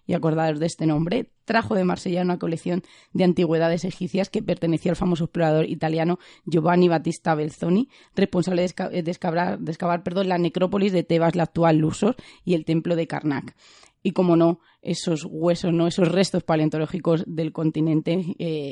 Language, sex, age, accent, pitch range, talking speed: Spanish, female, 20-39, Spanish, 160-180 Hz, 165 wpm